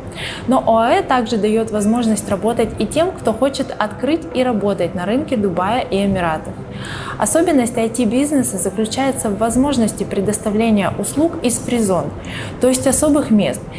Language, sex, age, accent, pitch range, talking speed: Russian, female, 20-39, native, 200-255 Hz, 135 wpm